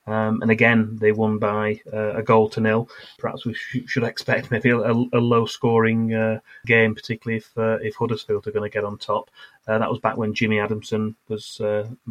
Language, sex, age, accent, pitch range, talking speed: English, male, 30-49, British, 105-120 Hz, 215 wpm